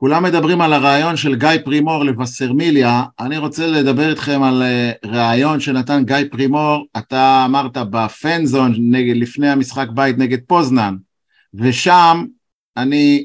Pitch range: 135-170 Hz